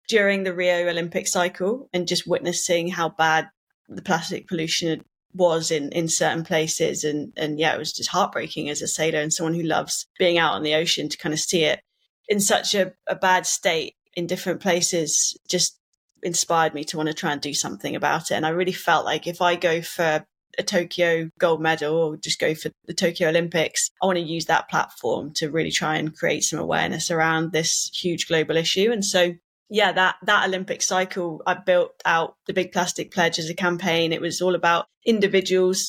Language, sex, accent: English, female, British